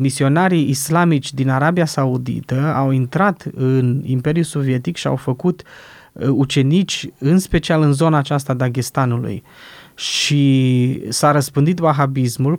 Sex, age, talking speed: male, 20-39, 115 wpm